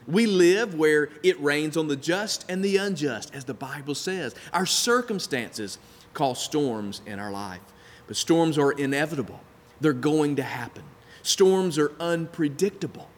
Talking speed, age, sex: 150 wpm, 40-59, male